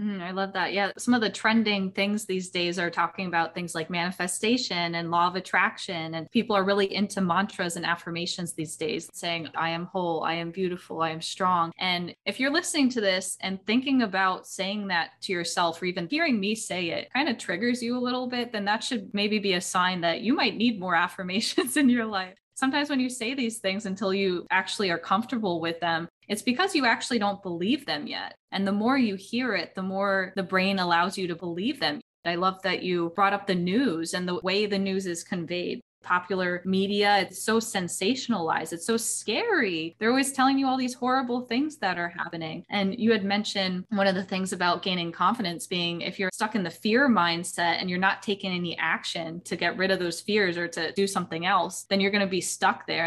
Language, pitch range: English, 175-225 Hz